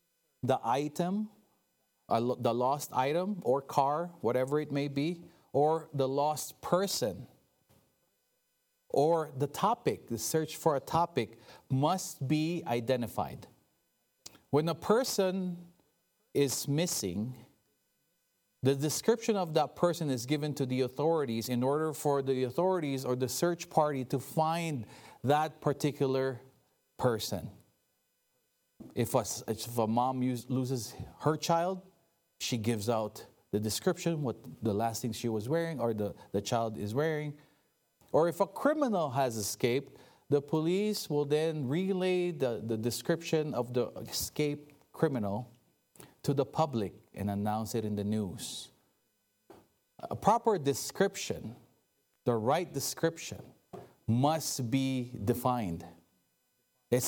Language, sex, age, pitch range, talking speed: English, male, 40-59, 120-165 Hz, 125 wpm